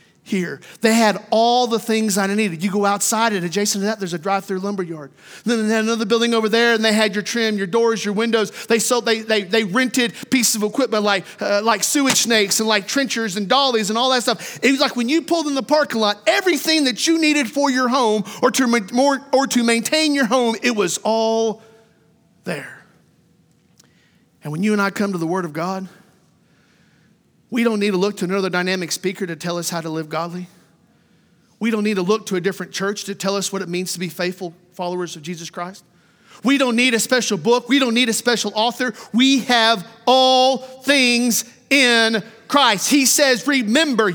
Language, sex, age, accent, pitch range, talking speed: English, male, 40-59, American, 190-245 Hz, 215 wpm